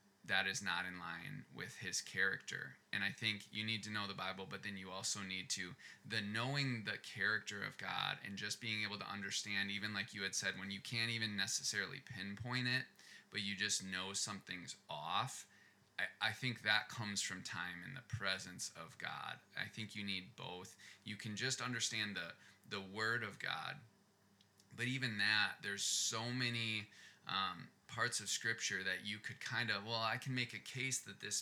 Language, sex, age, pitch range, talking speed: English, male, 20-39, 100-115 Hz, 195 wpm